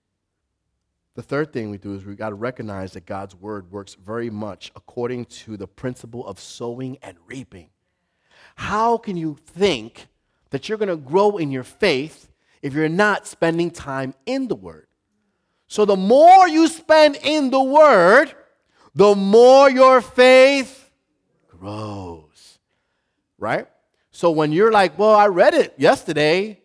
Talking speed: 150 wpm